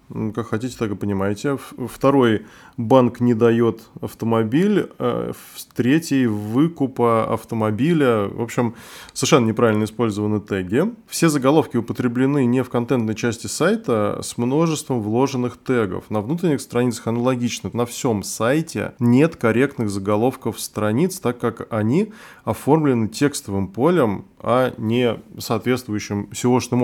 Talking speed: 115 wpm